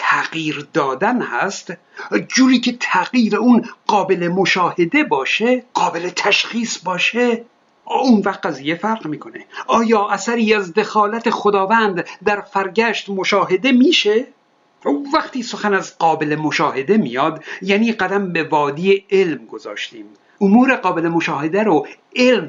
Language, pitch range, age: Persian, 180-235 Hz, 60-79